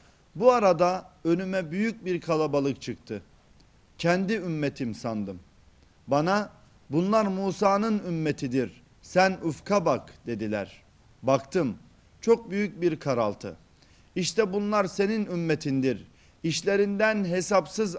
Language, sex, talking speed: Turkish, male, 95 wpm